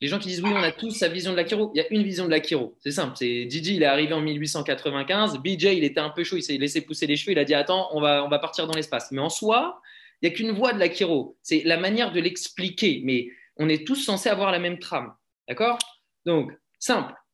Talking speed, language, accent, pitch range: 275 wpm, French, French, 165-220 Hz